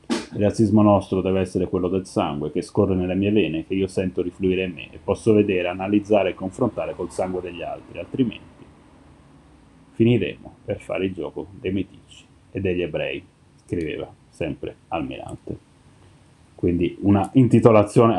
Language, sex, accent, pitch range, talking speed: Italian, male, native, 90-110 Hz, 150 wpm